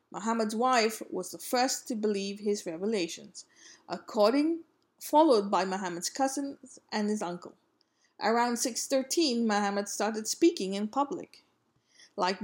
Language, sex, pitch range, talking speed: English, female, 200-280 Hz, 120 wpm